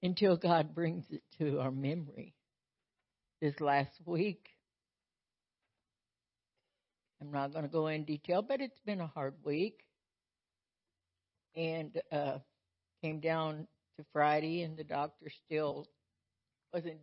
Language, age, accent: English, 60-79, American